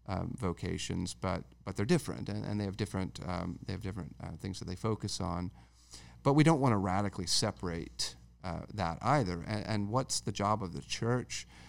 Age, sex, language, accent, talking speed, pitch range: 40-59, male, English, American, 200 wpm, 90-110 Hz